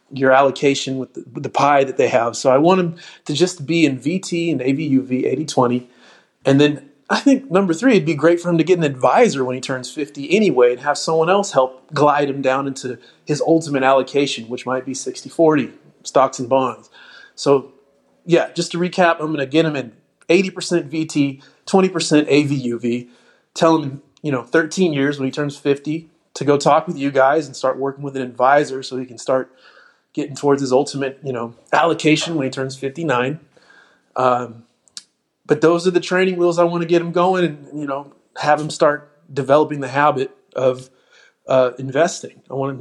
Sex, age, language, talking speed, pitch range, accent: male, 30-49, English, 200 wpm, 135-165 Hz, American